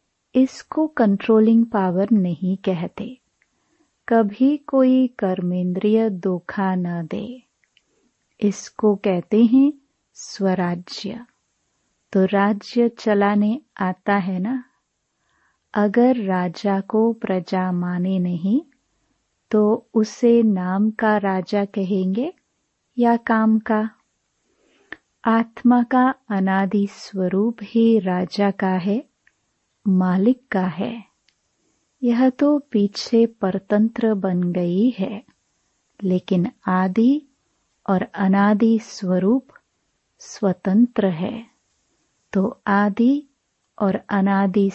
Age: 30-49